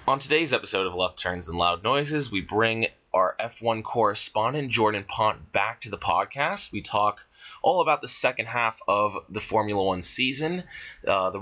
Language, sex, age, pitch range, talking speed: English, male, 20-39, 95-125 Hz, 180 wpm